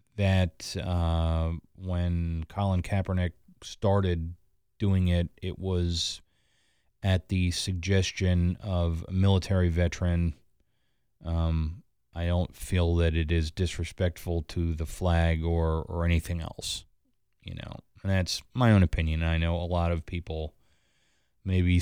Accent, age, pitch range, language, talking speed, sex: American, 30-49, 85-105 Hz, English, 125 wpm, male